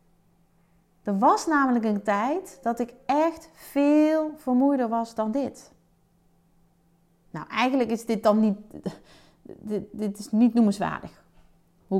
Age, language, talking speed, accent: 30-49, Dutch, 125 wpm, Dutch